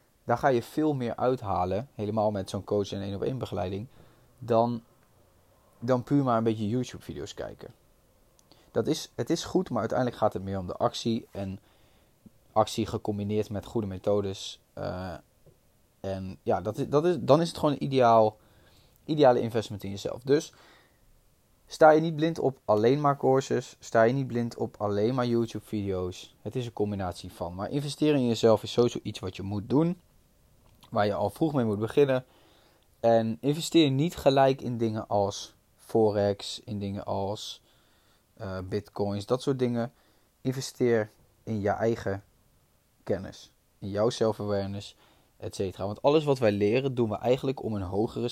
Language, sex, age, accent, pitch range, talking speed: Dutch, male, 20-39, Dutch, 100-125 Hz, 170 wpm